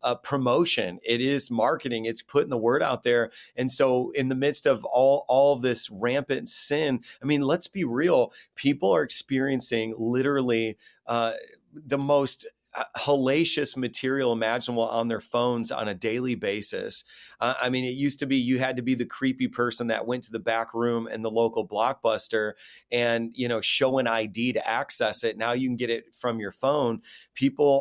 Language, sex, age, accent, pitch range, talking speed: English, male, 30-49, American, 115-140 Hz, 190 wpm